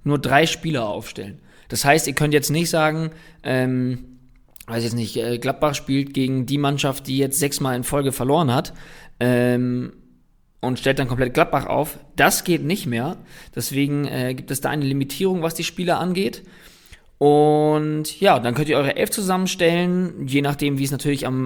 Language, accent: German, German